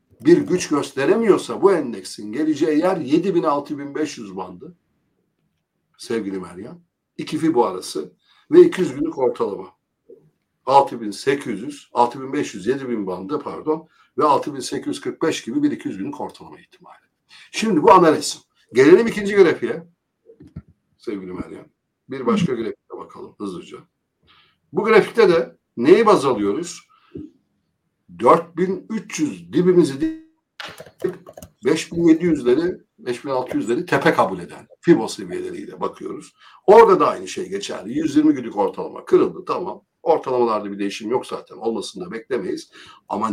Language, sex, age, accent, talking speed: Turkish, male, 60-79, native, 110 wpm